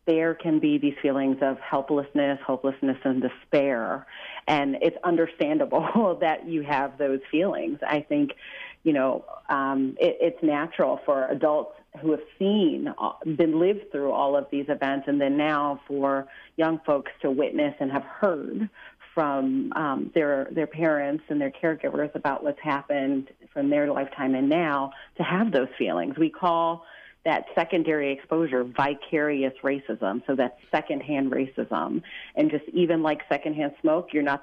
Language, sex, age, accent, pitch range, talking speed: English, female, 40-59, American, 140-175 Hz, 155 wpm